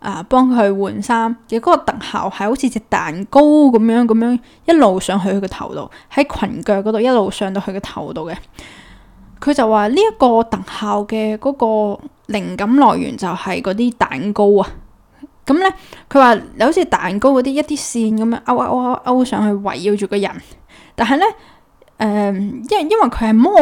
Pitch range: 205-270 Hz